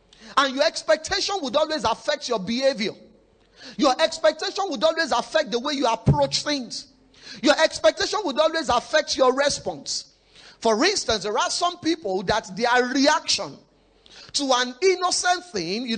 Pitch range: 230-315 Hz